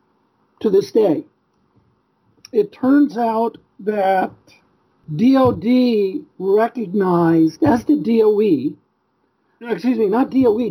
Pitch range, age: 200-270 Hz, 60-79